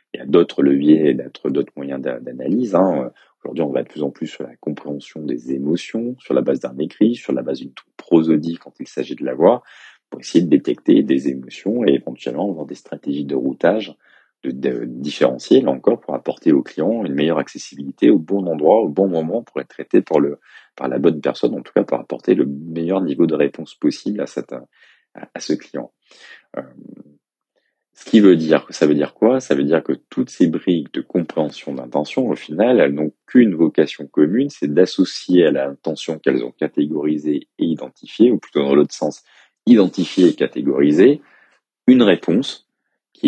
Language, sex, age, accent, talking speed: French, male, 30-49, French, 200 wpm